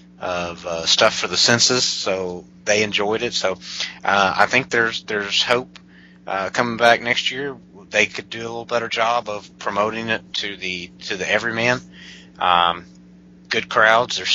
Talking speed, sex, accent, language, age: 170 wpm, male, American, English, 30-49